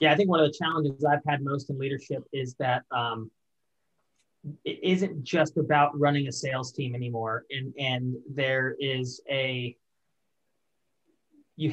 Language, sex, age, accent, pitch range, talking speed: English, male, 30-49, American, 135-155 Hz, 155 wpm